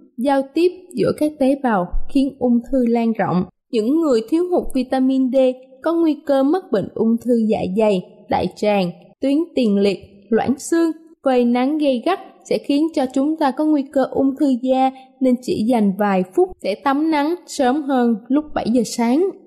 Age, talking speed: 20-39, 190 wpm